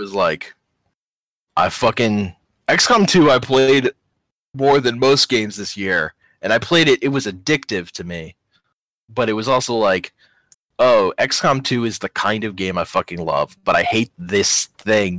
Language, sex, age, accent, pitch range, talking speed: English, male, 20-39, American, 110-155 Hz, 175 wpm